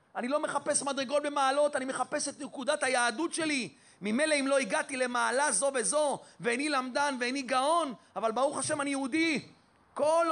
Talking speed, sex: 165 wpm, male